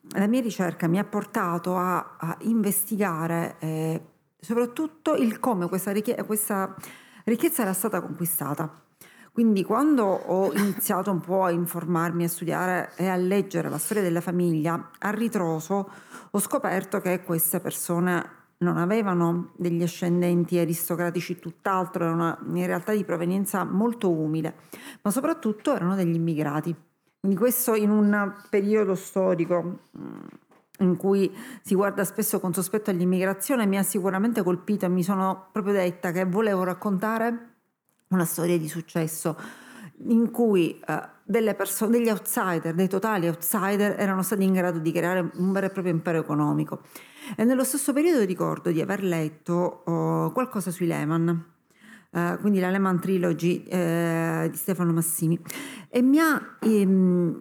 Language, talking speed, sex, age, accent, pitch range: Italian, 145 wpm, female, 40-59, native, 170-210 Hz